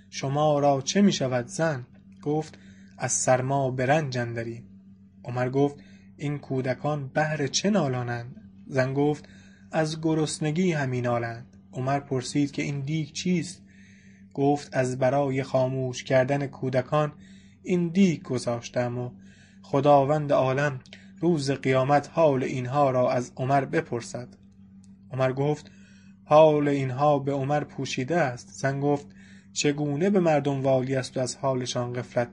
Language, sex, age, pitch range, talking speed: English, male, 20-39, 120-145 Hz, 125 wpm